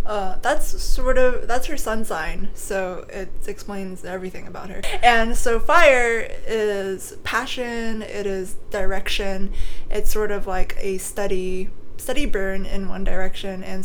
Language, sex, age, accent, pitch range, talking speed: English, female, 20-39, American, 185-225 Hz, 145 wpm